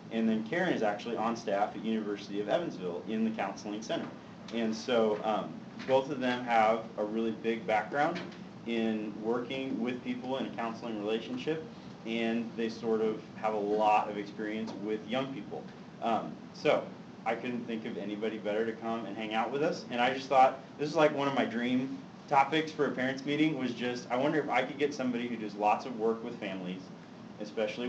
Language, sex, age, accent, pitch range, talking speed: English, male, 30-49, American, 110-135 Hz, 200 wpm